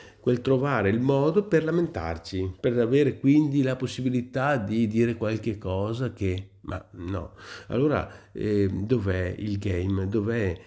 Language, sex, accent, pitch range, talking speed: Italian, male, native, 95-125 Hz, 135 wpm